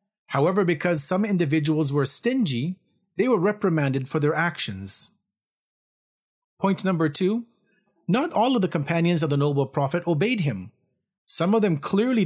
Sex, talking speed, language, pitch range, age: male, 145 wpm, English, 150-200 Hz, 30-49